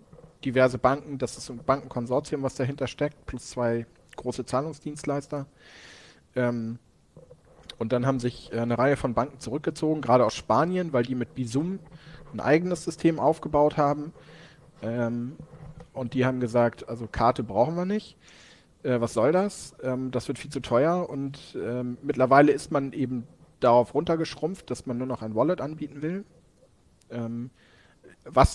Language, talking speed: German, 155 wpm